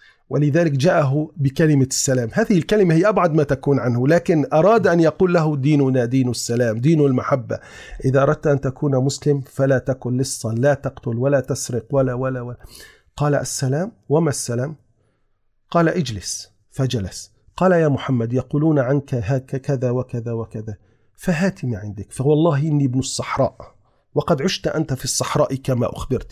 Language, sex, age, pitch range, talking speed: Arabic, male, 40-59, 125-150 Hz, 145 wpm